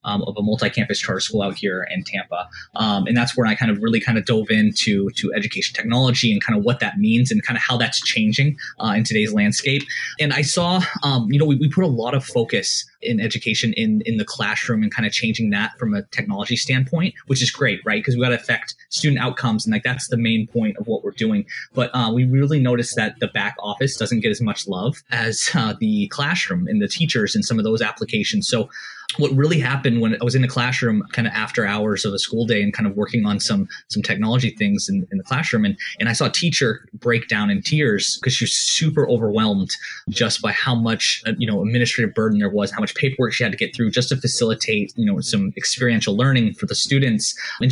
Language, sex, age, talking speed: English, male, 20-39, 240 wpm